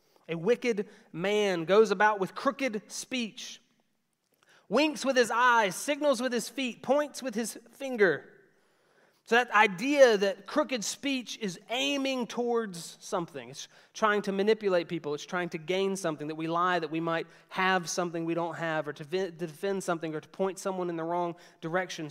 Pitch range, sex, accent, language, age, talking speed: 160-210 Hz, male, American, English, 30-49, 170 wpm